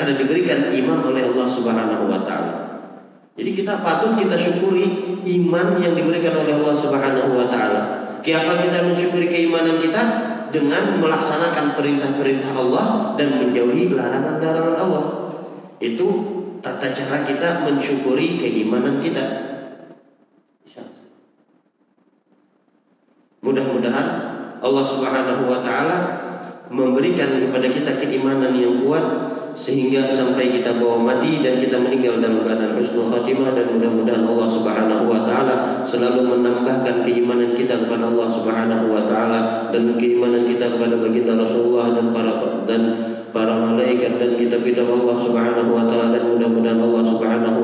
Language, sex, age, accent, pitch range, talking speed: Indonesian, male, 40-59, native, 120-140 Hz, 130 wpm